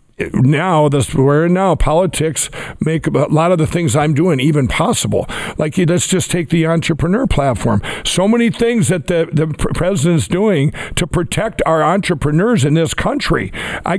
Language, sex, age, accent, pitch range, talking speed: English, male, 60-79, American, 135-170 Hz, 165 wpm